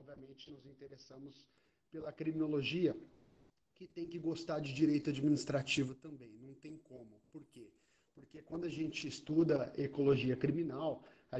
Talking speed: 130 wpm